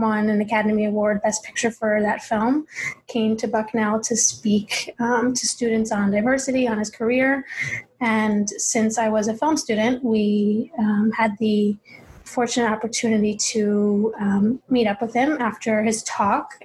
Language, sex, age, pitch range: English, female, 20-39, 215-235 Hz